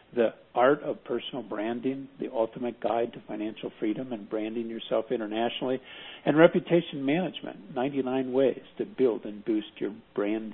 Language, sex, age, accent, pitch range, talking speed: English, male, 50-69, American, 115-150 Hz, 150 wpm